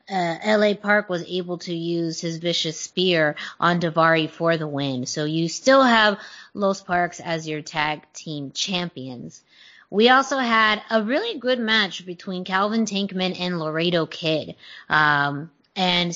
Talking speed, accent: 150 wpm, American